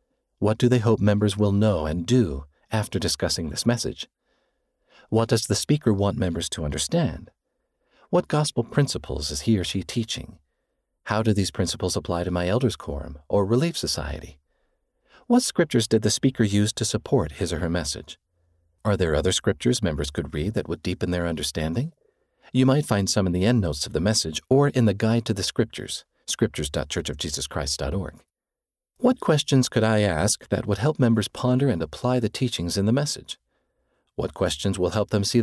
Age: 50-69